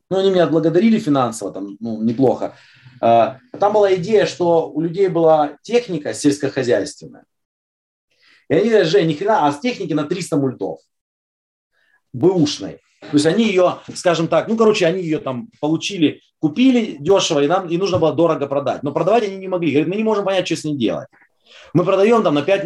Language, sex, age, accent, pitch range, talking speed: Russian, male, 30-49, native, 145-195 Hz, 190 wpm